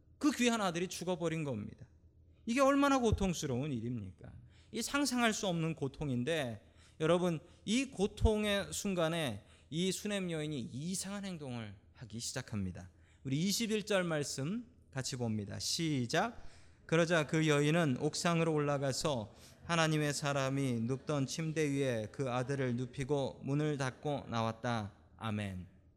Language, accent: Korean, native